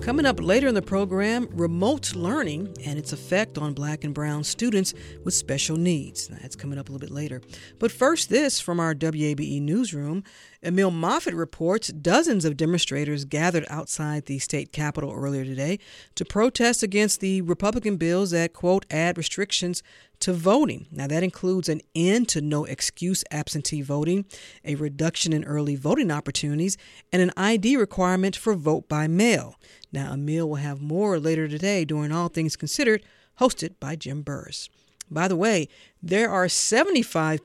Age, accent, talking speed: 50-69, American, 165 wpm